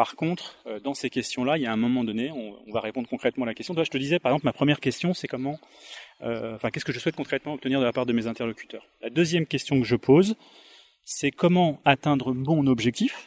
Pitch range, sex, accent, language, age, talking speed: 125-165 Hz, male, French, French, 30-49, 245 wpm